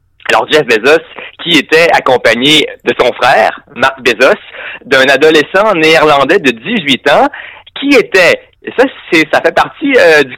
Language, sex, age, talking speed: French, male, 30-49, 150 wpm